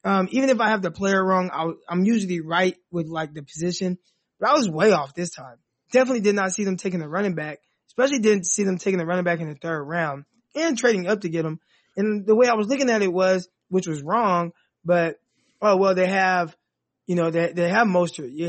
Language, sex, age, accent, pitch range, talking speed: English, male, 20-39, American, 170-210 Hz, 240 wpm